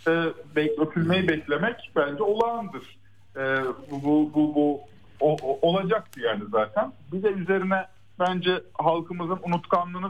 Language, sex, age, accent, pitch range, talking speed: Turkish, male, 50-69, native, 140-215 Hz, 115 wpm